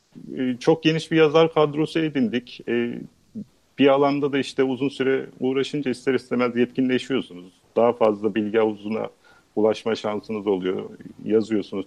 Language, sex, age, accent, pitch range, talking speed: Turkish, male, 50-69, native, 110-140 Hz, 115 wpm